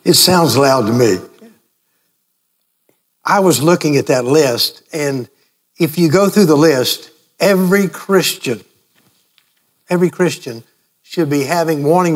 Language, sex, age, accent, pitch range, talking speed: English, male, 60-79, American, 135-170 Hz, 130 wpm